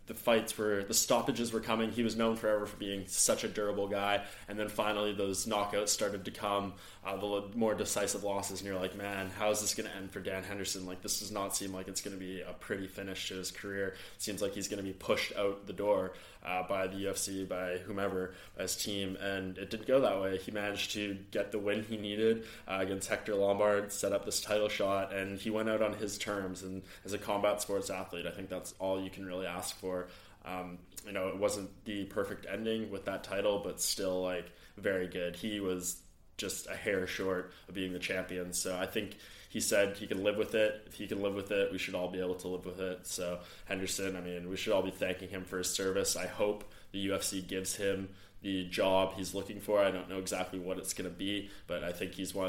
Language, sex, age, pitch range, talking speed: English, male, 20-39, 95-105 Hz, 245 wpm